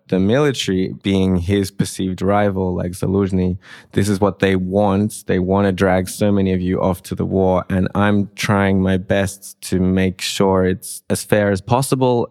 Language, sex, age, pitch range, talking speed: English, male, 20-39, 90-105 Hz, 185 wpm